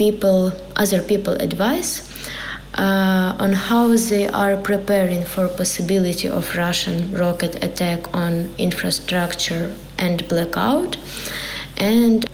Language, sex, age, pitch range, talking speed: Ukrainian, female, 20-39, 185-225 Hz, 100 wpm